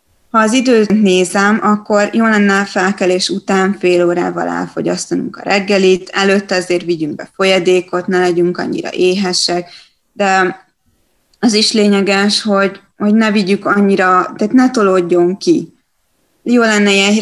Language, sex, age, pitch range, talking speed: Hungarian, female, 20-39, 180-210 Hz, 140 wpm